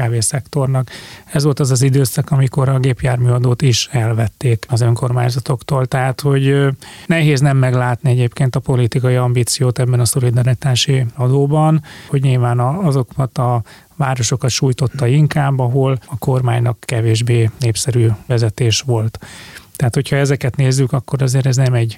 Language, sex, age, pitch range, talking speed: Hungarian, male, 30-49, 120-140 Hz, 135 wpm